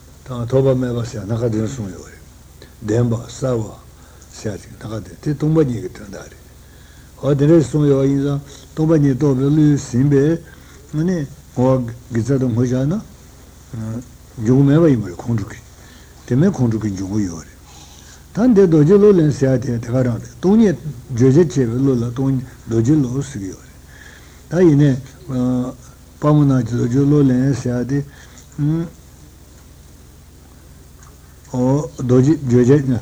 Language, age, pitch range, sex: Italian, 60-79, 110-140 Hz, male